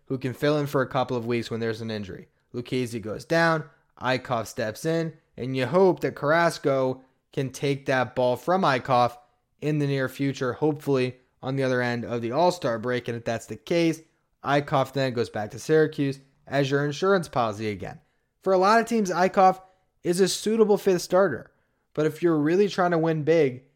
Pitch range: 125-160 Hz